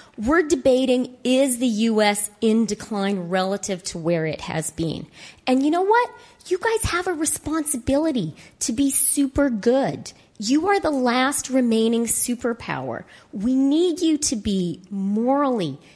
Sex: female